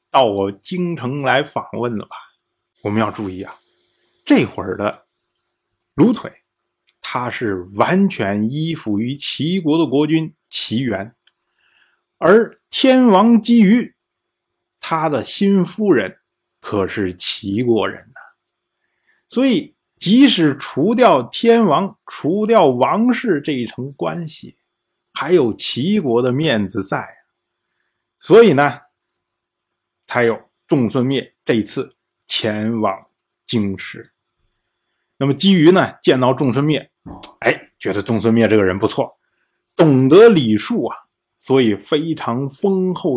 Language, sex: Chinese, male